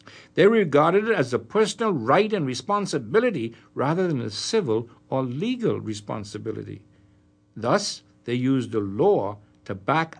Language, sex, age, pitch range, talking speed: English, male, 60-79, 115-170 Hz, 135 wpm